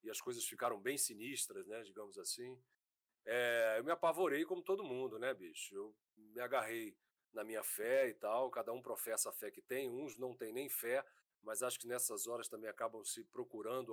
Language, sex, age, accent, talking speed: Portuguese, male, 40-59, Brazilian, 200 wpm